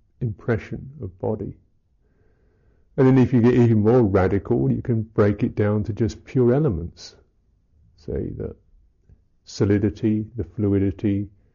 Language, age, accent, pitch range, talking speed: English, 50-69, British, 90-125 Hz, 130 wpm